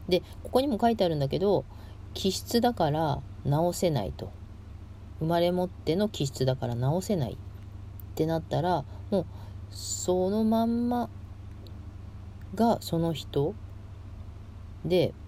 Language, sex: Japanese, female